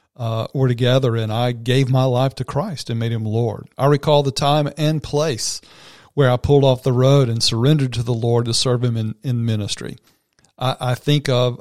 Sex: male